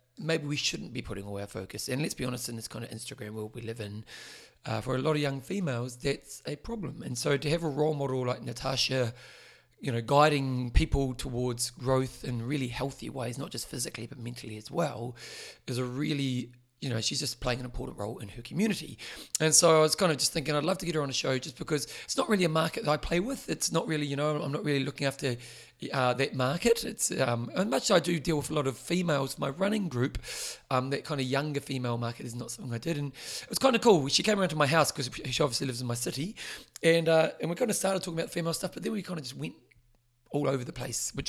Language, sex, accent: English, male, British